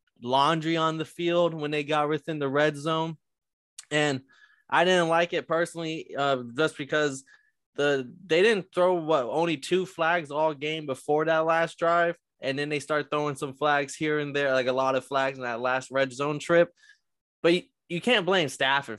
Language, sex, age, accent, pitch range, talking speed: English, male, 20-39, American, 135-165 Hz, 195 wpm